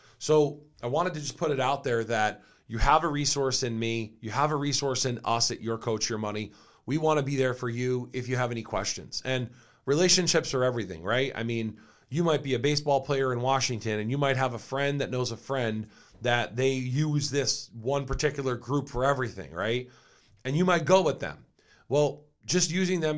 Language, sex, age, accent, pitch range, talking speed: English, male, 40-59, American, 120-140 Hz, 215 wpm